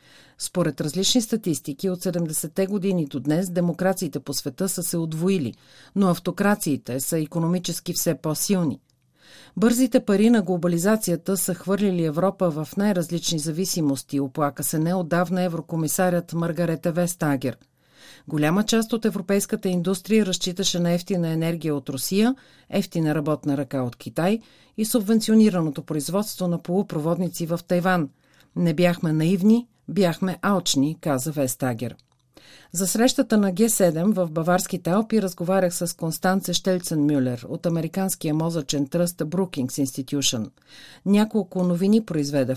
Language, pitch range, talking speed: Bulgarian, 150-190 Hz, 125 wpm